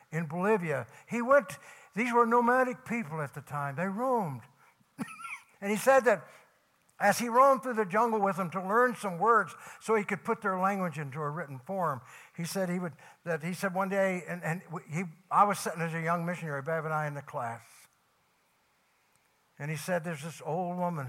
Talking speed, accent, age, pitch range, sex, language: 200 wpm, American, 60-79, 145-210 Hz, male, English